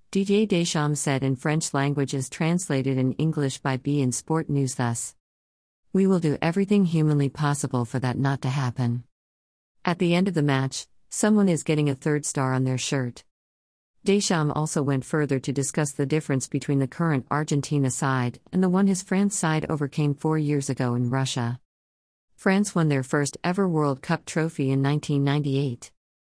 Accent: American